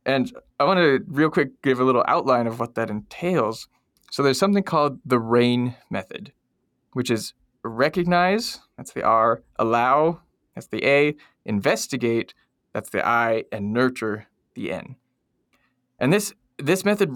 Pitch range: 120-150 Hz